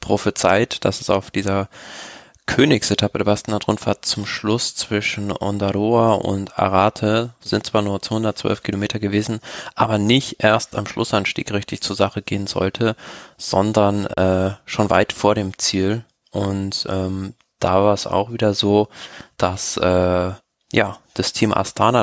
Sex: male